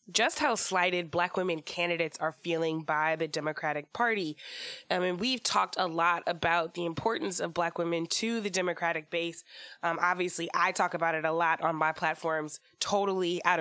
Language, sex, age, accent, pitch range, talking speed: English, female, 20-39, American, 165-190 Hz, 180 wpm